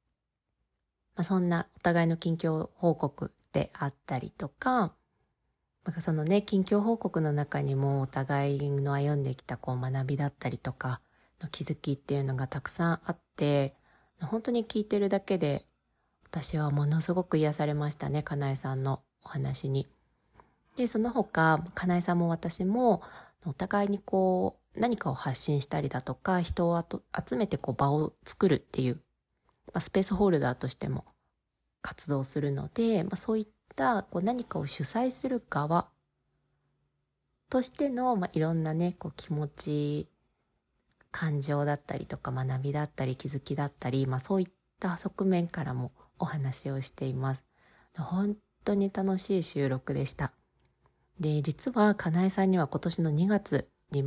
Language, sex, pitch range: Japanese, female, 140-190 Hz